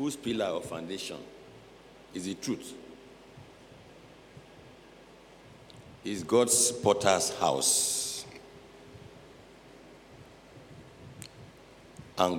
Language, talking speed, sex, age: English, 55 wpm, male, 60-79